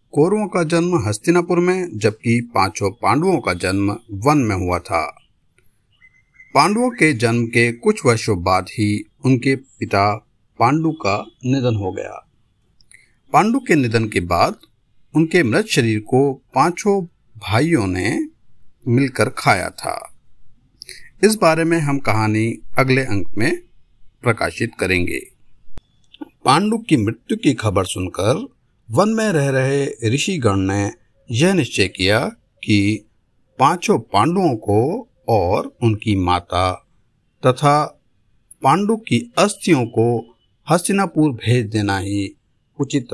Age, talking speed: 50-69, 120 wpm